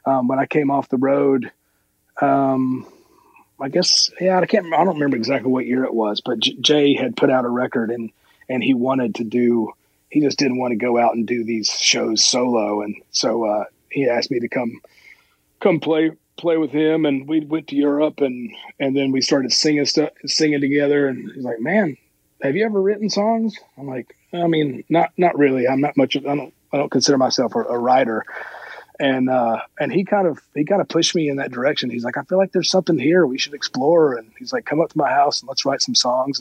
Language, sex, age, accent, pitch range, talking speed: English, male, 30-49, American, 125-155 Hz, 230 wpm